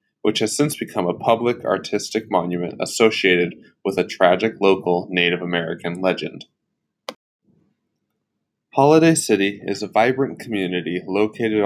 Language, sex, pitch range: English, male, 95-115 Hz